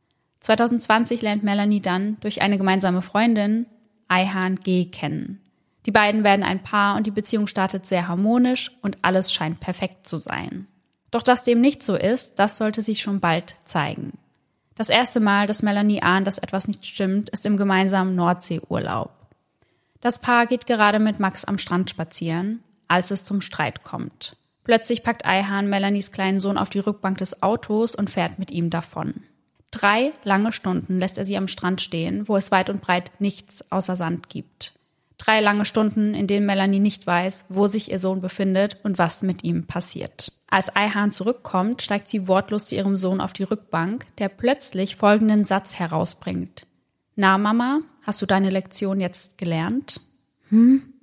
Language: German